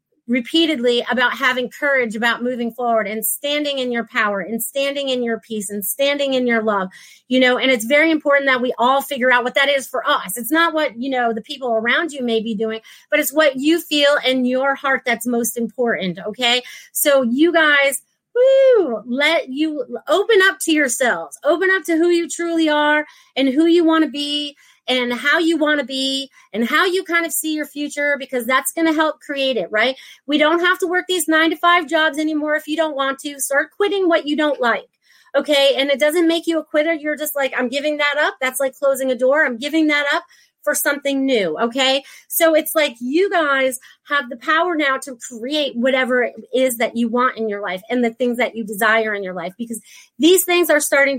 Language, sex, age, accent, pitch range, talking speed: English, female, 30-49, American, 245-315 Hz, 225 wpm